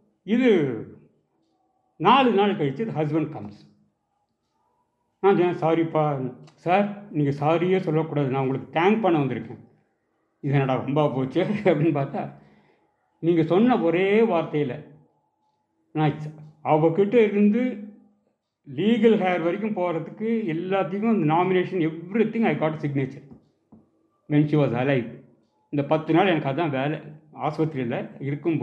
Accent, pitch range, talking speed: Indian, 145-200 Hz, 40 wpm